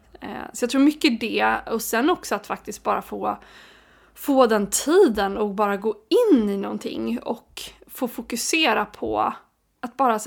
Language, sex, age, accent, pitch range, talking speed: Swedish, female, 20-39, native, 215-250 Hz, 165 wpm